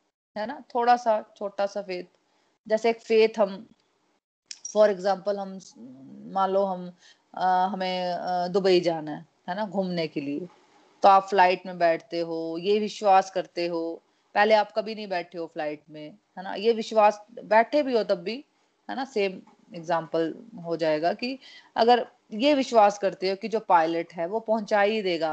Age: 30-49